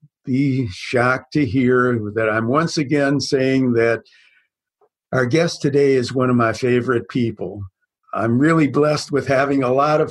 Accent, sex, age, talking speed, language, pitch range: American, male, 60-79, 160 wpm, English, 120-145 Hz